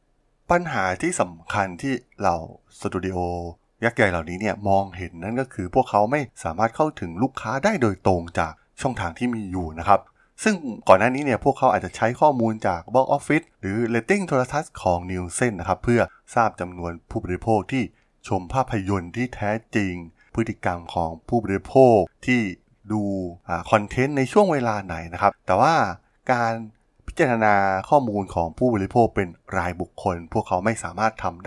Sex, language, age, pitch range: male, Thai, 20-39, 90-120 Hz